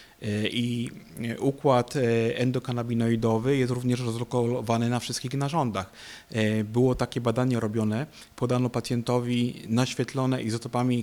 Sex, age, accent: male, 30-49, native